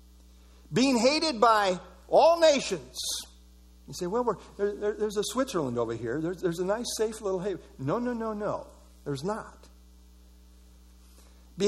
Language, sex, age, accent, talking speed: English, male, 50-69, American, 140 wpm